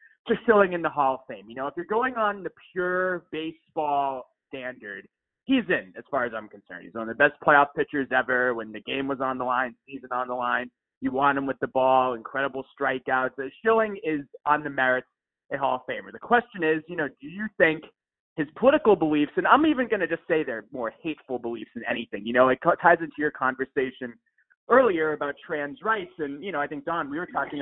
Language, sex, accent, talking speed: English, male, American, 230 wpm